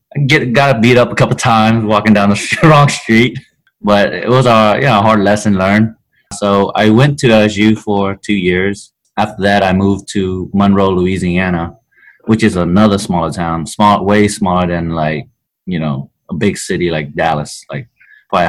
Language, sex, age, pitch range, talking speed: English, male, 20-39, 85-110 Hz, 190 wpm